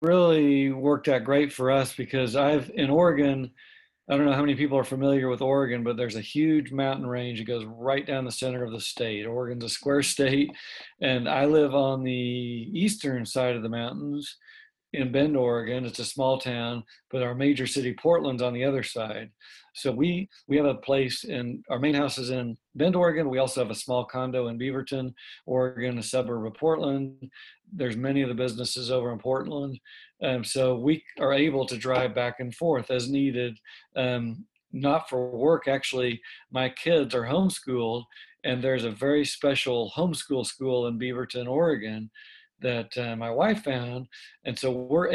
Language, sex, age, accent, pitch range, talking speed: English, male, 50-69, American, 125-140 Hz, 185 wpm